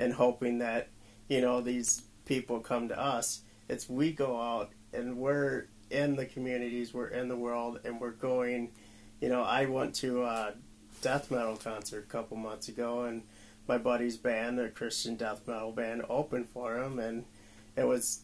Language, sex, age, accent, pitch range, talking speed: English, male, 40-59, American, 110-125 Hz, 180 wpm